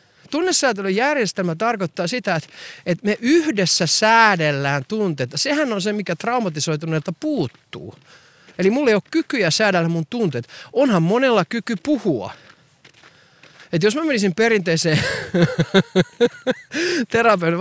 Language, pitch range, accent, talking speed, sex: Finnish, 145-215 Hz, native, 110 wpm, male